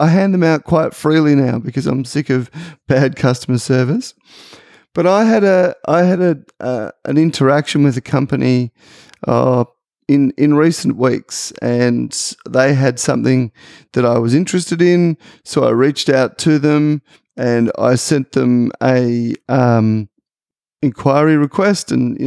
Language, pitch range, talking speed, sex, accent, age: English, 125-155 Hz, 155 wpm, male, Australian, 30-49